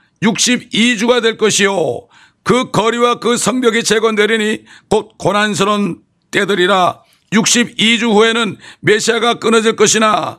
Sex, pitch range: male, 170-220 Hz